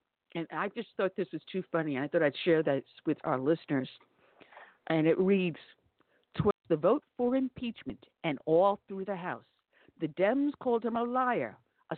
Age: 50-69